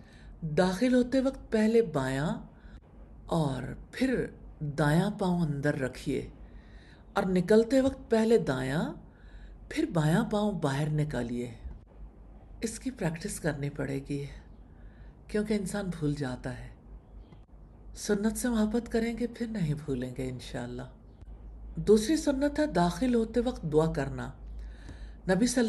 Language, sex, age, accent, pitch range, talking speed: English, female, 50-69, Indian, 145-230 Hz, 120 wpm